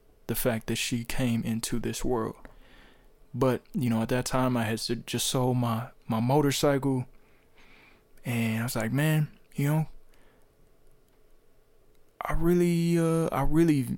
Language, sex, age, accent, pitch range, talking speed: English, male, 20-39, American, 115-135 Hz, 140 wpm